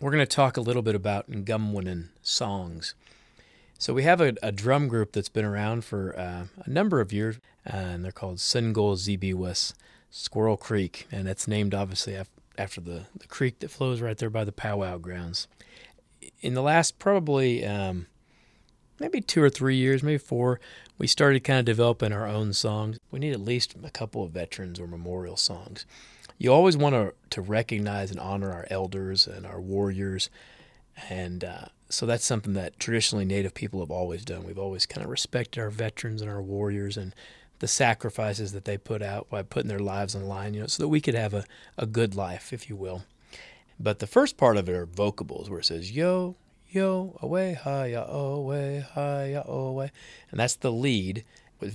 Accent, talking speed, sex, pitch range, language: American, 195 wpm, male, 95-125 Hz, English